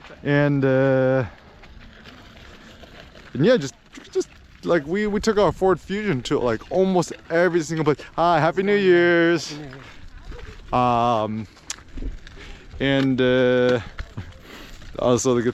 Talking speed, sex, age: 110 wpm, male, 20-39